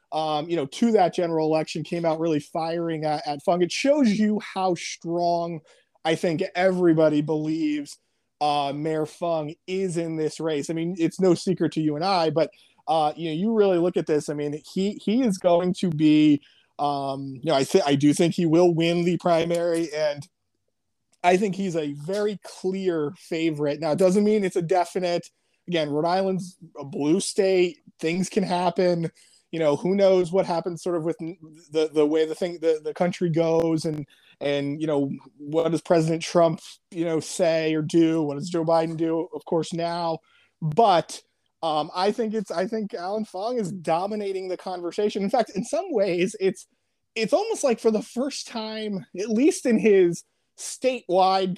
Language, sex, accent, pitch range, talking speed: English, male, American, 155-190 Hz, 190 wpm